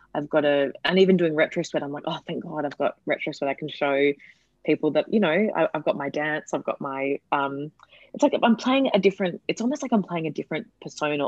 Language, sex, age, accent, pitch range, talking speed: English, female, 20-39, Australian, 140-185 Hz, 255 wpm